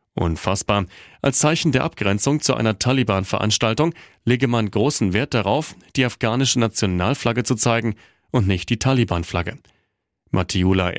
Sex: male